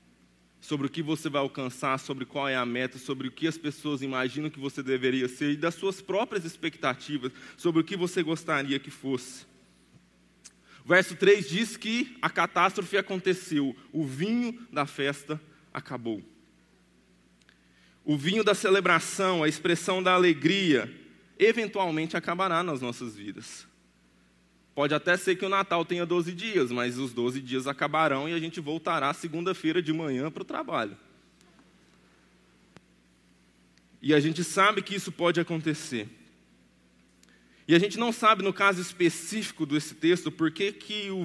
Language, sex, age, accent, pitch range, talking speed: Portuguese, male, 20-39, Brazilian, 135-180 Hz, 150 wpm